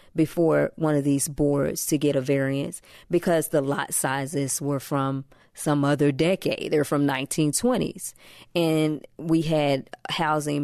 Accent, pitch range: American, 140-165 Hz